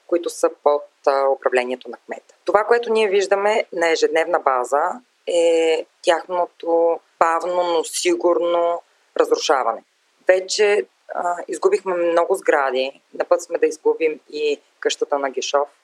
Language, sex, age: Bulgarian, female, 20-39